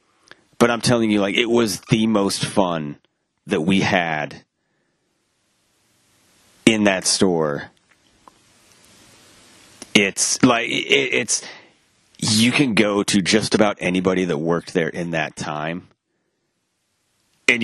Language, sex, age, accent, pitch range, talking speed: English, male, 30-49, American, 80-105 Hz, 115 wpm